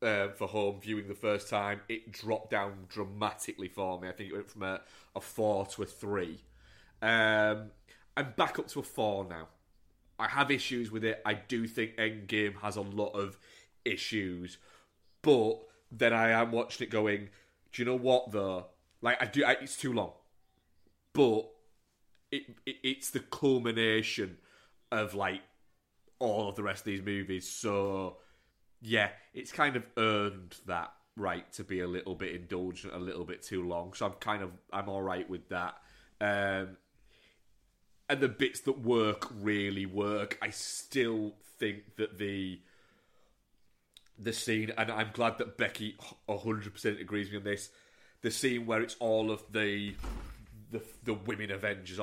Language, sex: English, male